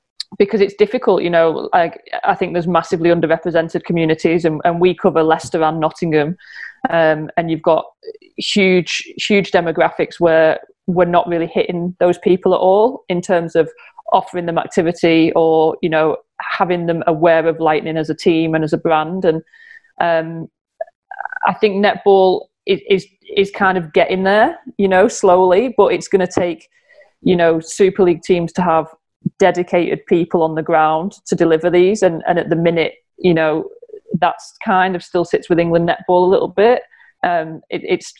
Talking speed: 175 wpm